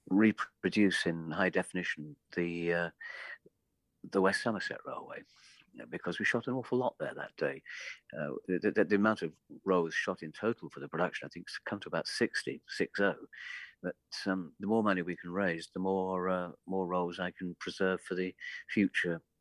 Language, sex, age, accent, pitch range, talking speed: English, male, 50-69, British, 85-100 Hz, 190 wpm